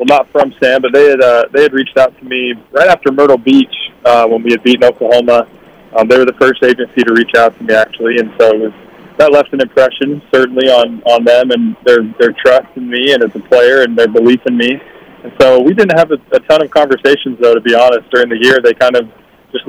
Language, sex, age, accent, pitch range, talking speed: English, male, 20-39, American, 120-135 Hz, 255 wpm